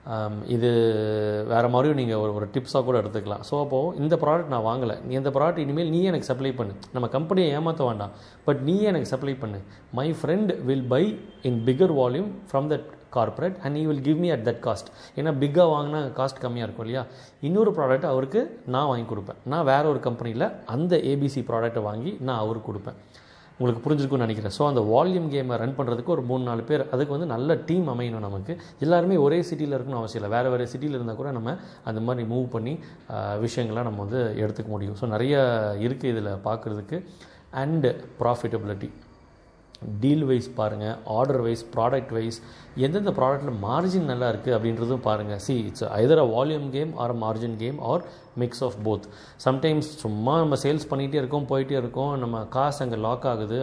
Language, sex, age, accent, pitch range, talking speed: Tamil, male, 30-49, native, 115-145 Hz, 175 wpm